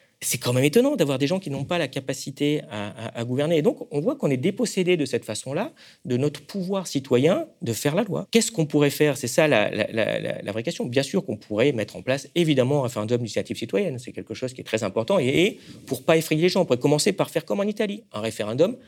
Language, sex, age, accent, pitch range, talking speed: French, male, 40-59, French, 115-160 Hz, 260 wpm